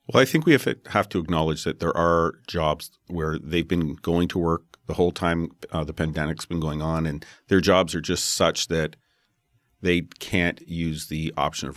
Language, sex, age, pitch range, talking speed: English, male, 40-59, 80-95 Hz, 215 wpm